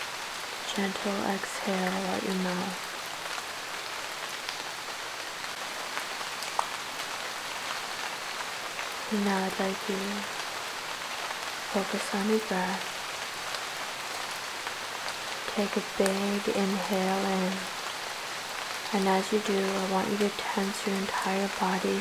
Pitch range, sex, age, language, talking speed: 190-210 Hz, female, 20-39, English, 85 wpm